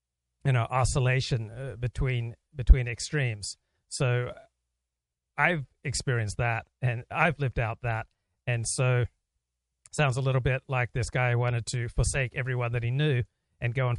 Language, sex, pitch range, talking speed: English, male, 115-140 Hz, 150 wpm